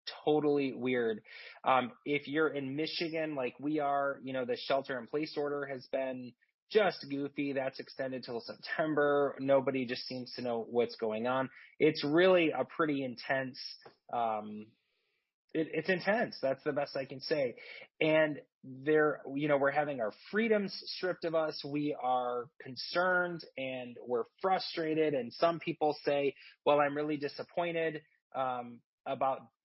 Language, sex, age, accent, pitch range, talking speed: English, male, 30-49, American, 125-150 Hz, 150 wpm